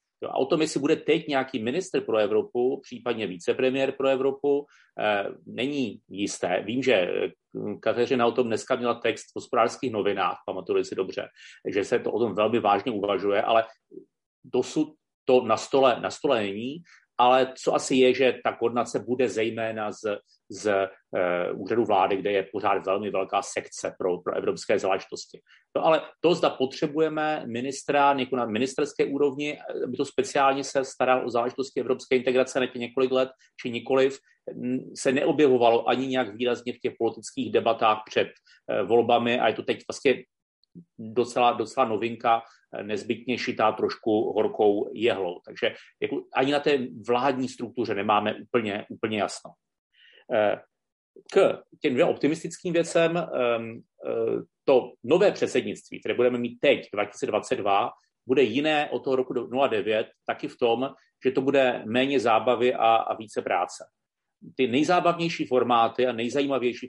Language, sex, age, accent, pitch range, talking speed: Czech, male, 40-59, native, 120-140 Hz, 150 wpm